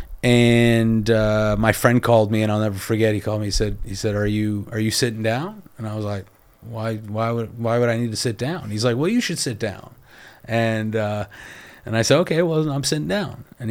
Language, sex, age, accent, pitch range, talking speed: English, male, 30-49, American, 105-125 Hz, 240 wpm